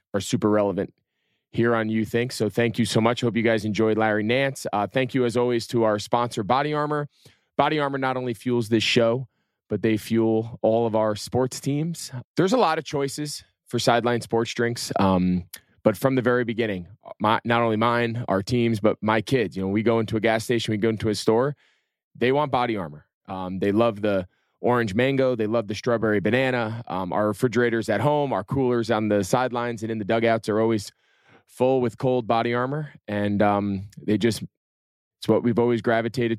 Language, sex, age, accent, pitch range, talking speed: English, male, 20-39, American, 105-125 Hz, 205 wpm